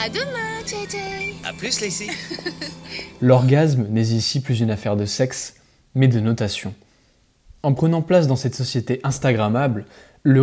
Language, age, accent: French, 20-39, French